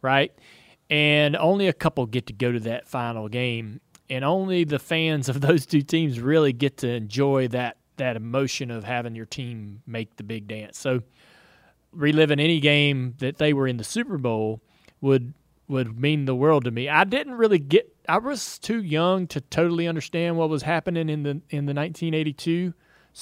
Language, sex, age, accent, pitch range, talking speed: English, male, 30-49, American, 120-160 Hz, 185 wpm